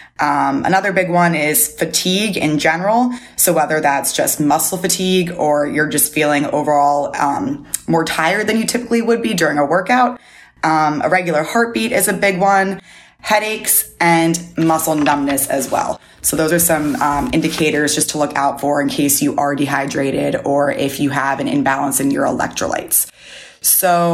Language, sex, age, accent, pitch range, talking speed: English, female, 20-39, American, 145-175 Hz, 175 wpm